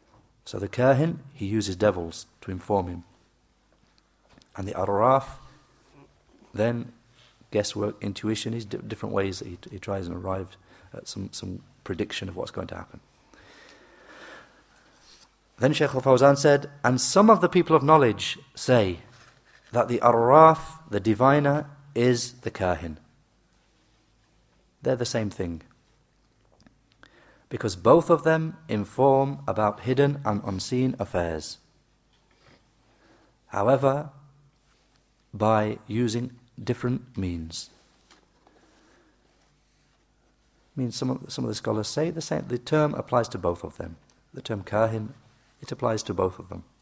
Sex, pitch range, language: male, 100-135 Hz, English